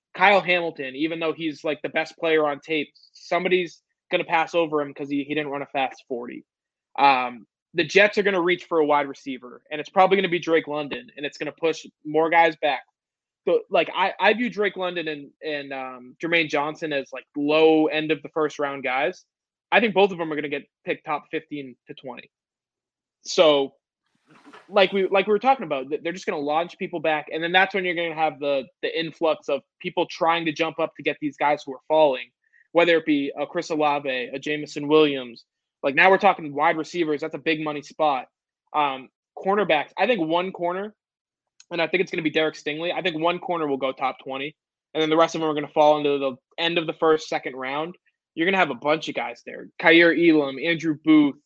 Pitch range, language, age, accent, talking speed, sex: 145-170 Hz, English, 20-39, American, 235 wpm, male